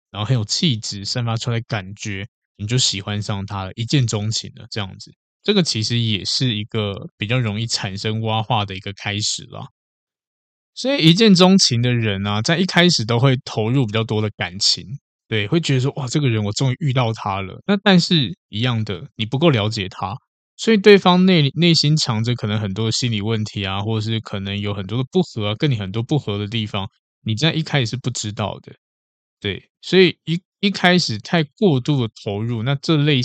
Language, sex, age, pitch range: Chinese, male, 20-39, 105-135 Hz